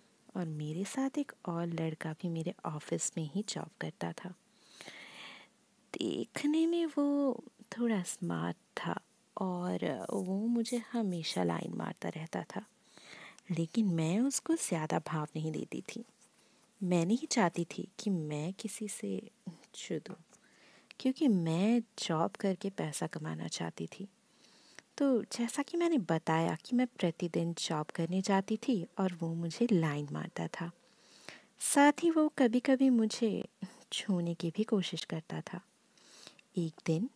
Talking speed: 135 wpm